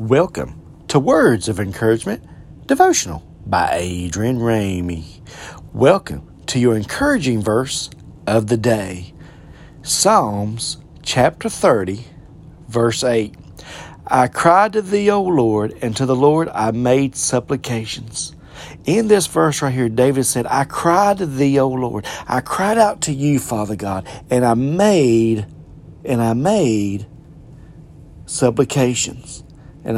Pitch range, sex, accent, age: 115-185 Hz, male, American, 40-59